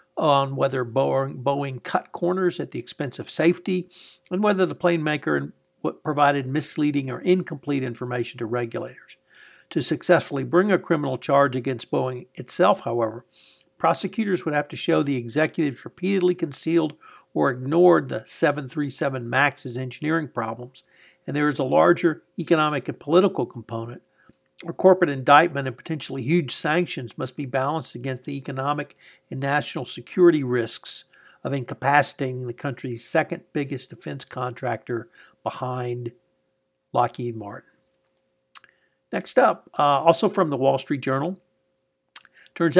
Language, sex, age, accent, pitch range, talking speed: English, male, 60-79, American, 130-170 Hz, 135 wpm